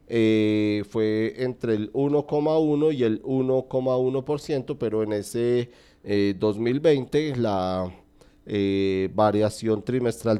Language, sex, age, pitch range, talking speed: Spanish, male, 40-59, 105-135 Hz, 100 wpm